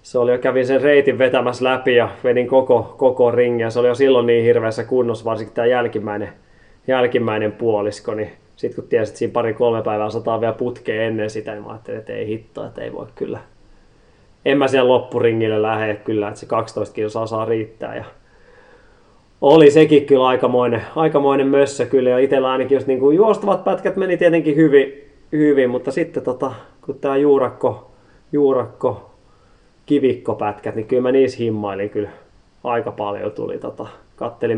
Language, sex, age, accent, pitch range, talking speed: Finnish, male, 20-39, native, 110-140 Hz, 165 wpm